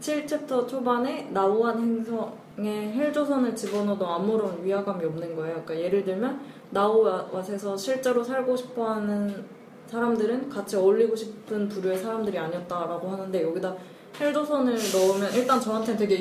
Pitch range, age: 185-230 Hz, 20-39